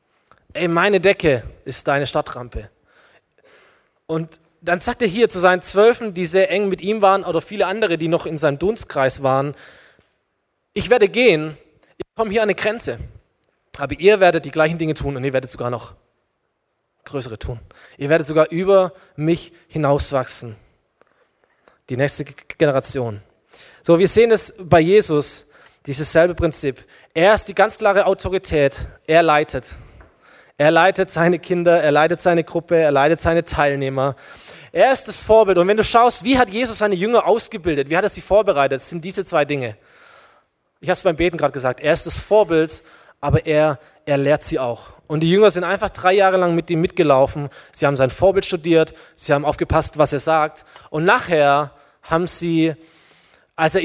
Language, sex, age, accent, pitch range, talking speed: German, male, 20-39, German, 145-190 Hz, 175 wpm